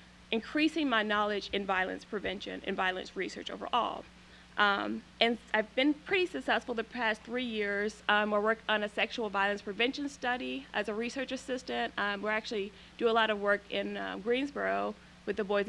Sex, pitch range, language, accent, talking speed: female, 200-235 Hz, English, American, 180 wpm